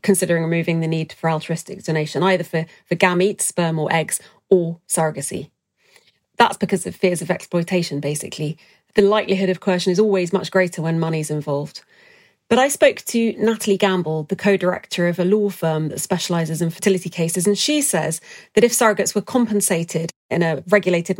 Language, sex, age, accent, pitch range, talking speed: English, female, 30-49, British, 165-200 Hz, 175 wpm